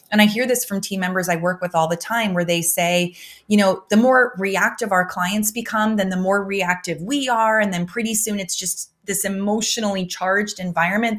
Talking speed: 215 wpm